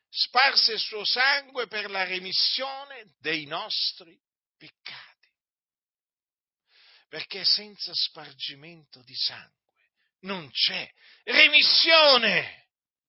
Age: 50-69